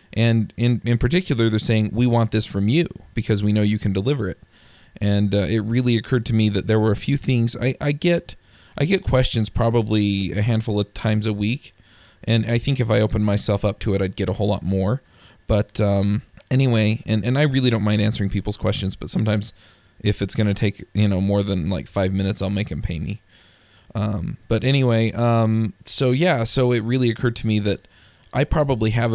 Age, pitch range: 20-39, 100-115 Hz